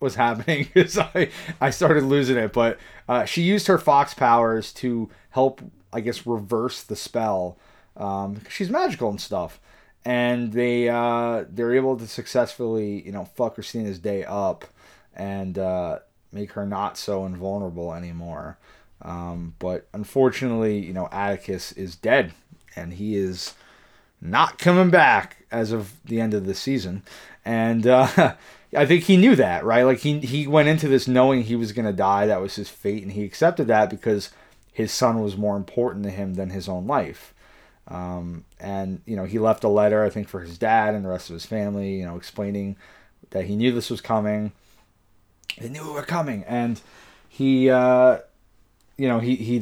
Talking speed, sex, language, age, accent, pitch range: 180 wpm, male, English, 30-49, American, 100-125 Hz